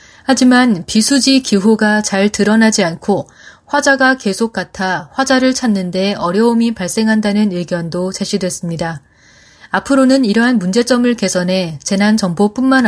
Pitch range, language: 180-235 Hz, Korean